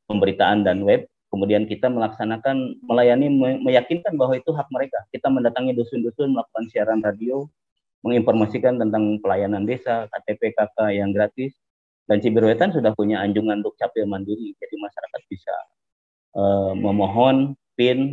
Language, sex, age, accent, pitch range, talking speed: Indonesian, male, 30-49, native, 100-125 Hz, 130 wpm